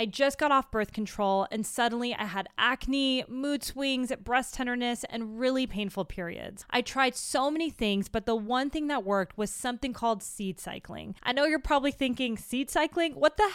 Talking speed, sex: 195 wpm, female